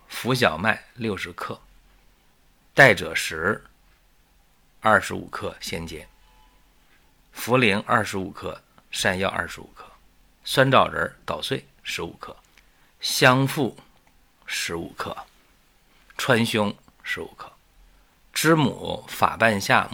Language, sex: Chinese, male